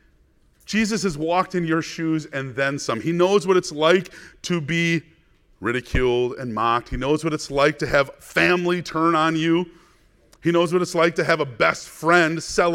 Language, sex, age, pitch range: English, male, 30-49, 100-170 Hz